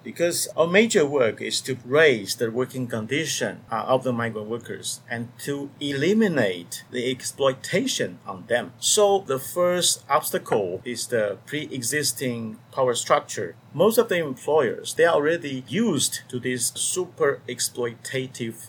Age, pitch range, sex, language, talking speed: 50-69, 120-165 Hz, male, English, 135 wpm